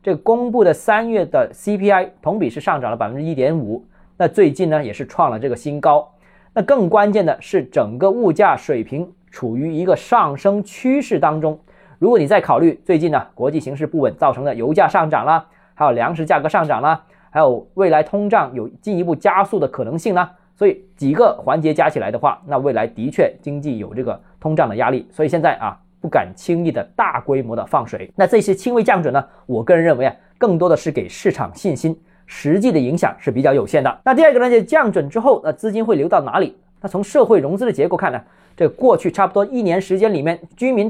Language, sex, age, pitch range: Chinese, male, 20-39, 155-210 Hz